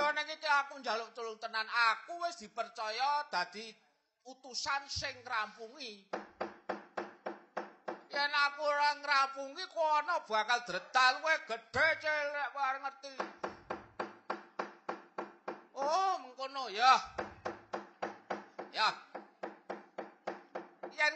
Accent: native